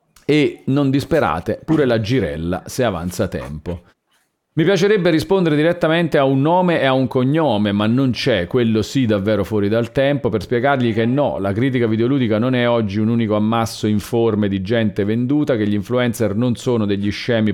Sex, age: male, 40-59